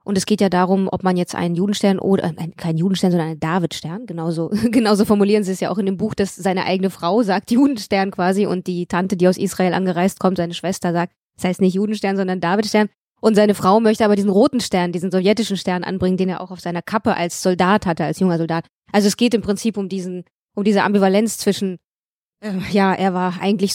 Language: German